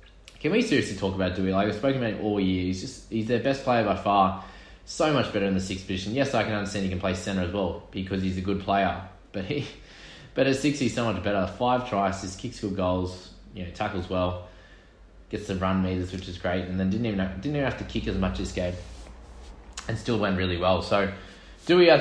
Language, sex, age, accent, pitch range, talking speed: English, male, 20-39, Australian, 90-105 Hz, 250 wpm